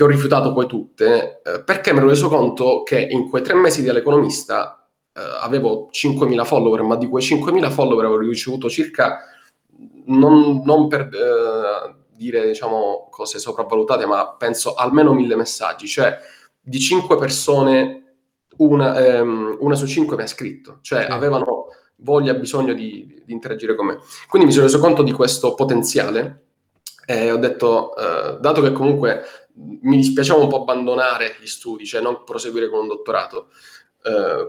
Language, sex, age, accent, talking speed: Italian, male, 20-39, native, 160 wpm